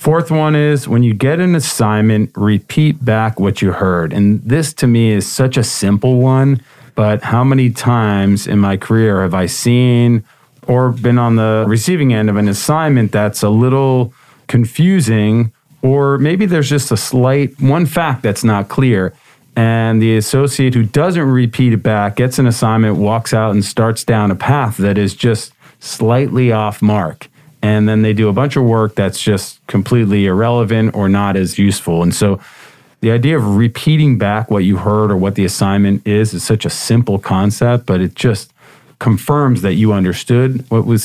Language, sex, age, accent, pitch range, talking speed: English, male, 40-59, American, 100-130 Hz, 185 wpm